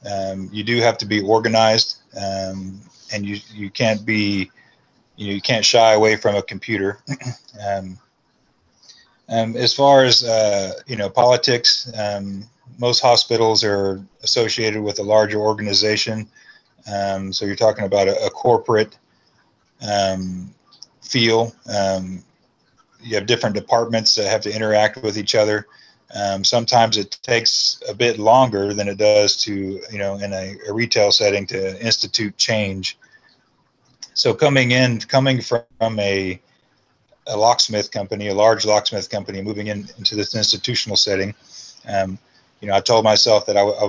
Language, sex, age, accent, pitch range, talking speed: English, male, 30-49, American, 100-115 Hz, 150 wpm